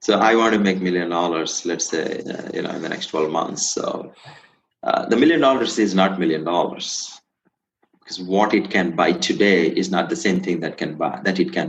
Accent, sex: Indian, male